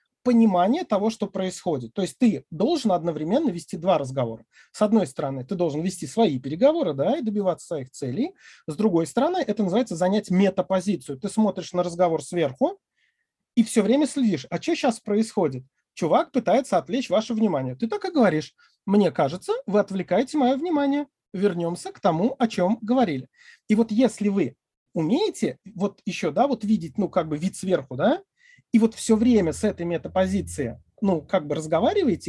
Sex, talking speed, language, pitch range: male, 175 wpm, Russian, 165-230 Hz